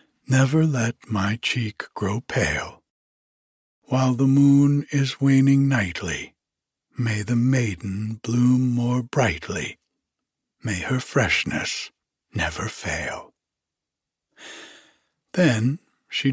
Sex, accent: male, American